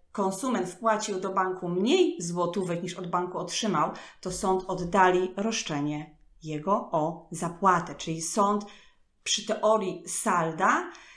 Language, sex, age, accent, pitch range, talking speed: Polish, female, 30-49, native, 170-200 Hz, 120 wpm